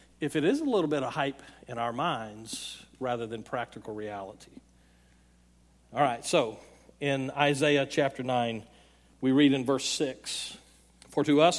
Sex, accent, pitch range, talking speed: male, American, 140-195 Hz, 155 wpm